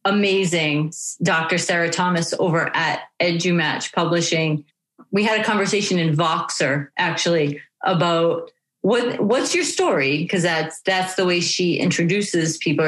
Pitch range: 175-215 Hz